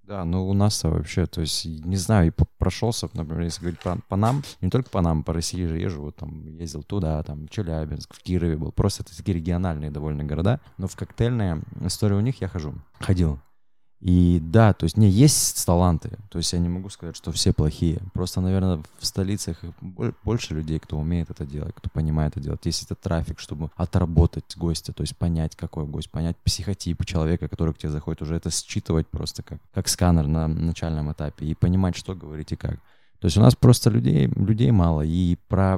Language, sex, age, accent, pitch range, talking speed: Russian, male, 20-39, native, 80-100 Hz, 205 wpm